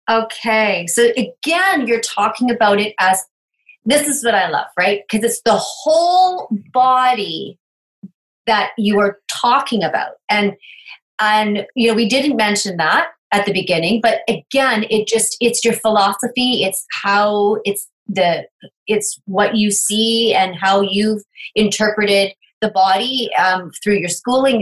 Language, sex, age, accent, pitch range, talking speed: English, female, 30-49, American, 195-255 Hz, 145 wpm